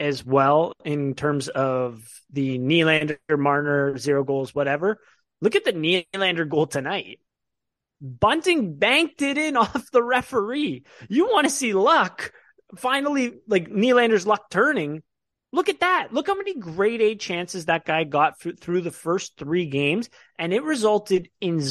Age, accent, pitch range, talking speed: 30-49, American, 155-245 Hz, 150 wpm